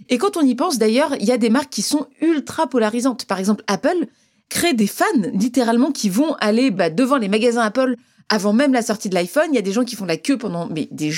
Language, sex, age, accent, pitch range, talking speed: French, female, 30-49, French, 200-260 Hz, 260 wpm